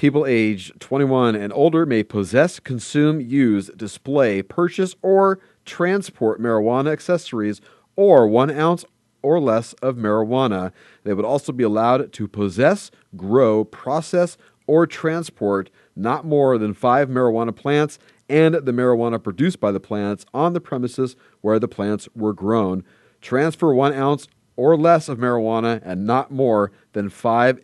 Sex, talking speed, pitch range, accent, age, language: male, 145 wpm, 105-135 Hz, American, 40-59, English